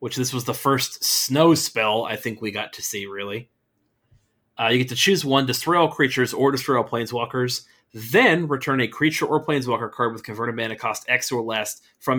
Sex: male